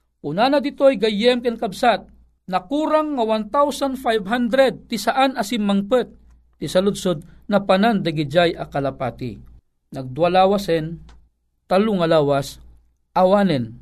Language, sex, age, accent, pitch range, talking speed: Filipino, male, 50-69, native, 165-240 Hz, 95 wpm